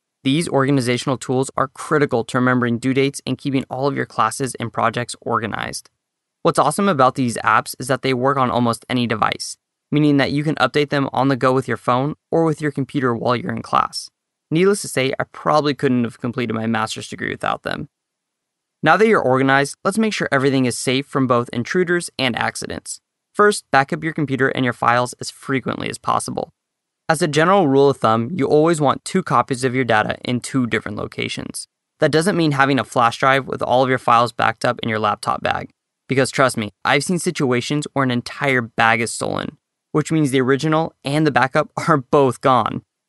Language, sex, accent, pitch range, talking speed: English, male, American, 125-150 Hz, 210 wpm